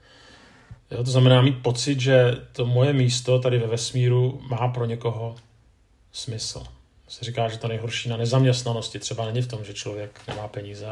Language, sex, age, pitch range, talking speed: Czech, male, 40-59, 115-130 Hz, 170 wpm